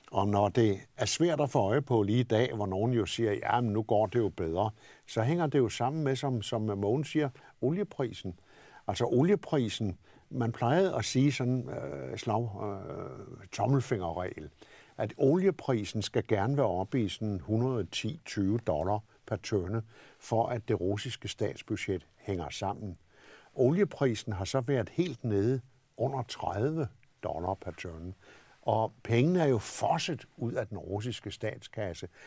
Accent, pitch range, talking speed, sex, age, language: native, 105-135 Hz, 160 wpm, male, 60-79, Danish